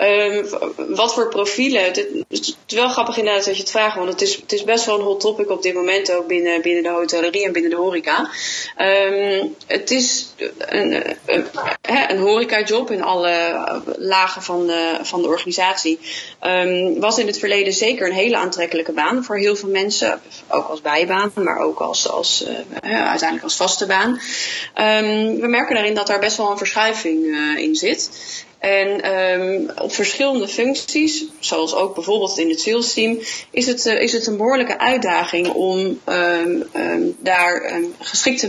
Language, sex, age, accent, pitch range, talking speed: Dutch, female, 20-39, Dutch, 180-240 Hz, 185 wpm